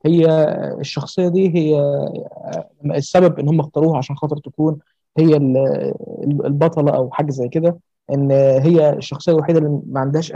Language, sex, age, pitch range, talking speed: Arabic, male, 20-39, 145-180 Hz, 140 wpm